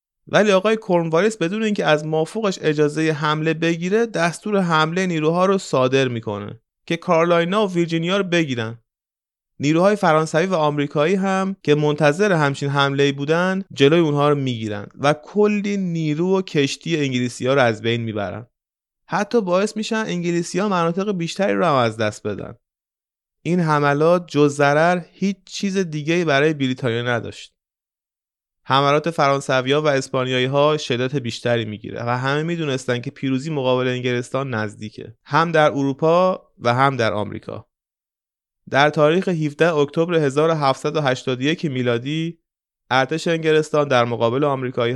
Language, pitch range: Persian, 130-170 Hz